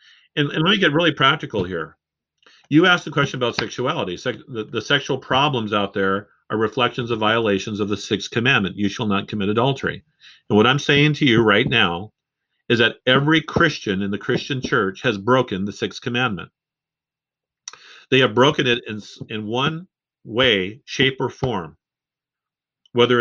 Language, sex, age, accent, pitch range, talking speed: English, male, 50-69, American, 105-140 Hz, 170 wpm